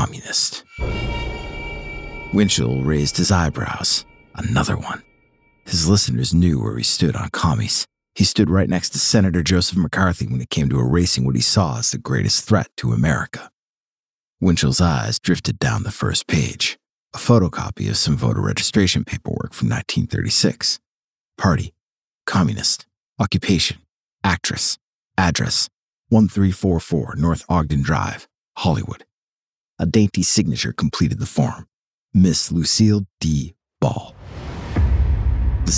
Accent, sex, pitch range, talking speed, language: American, male, 70-95 Hz, 125 wpm, English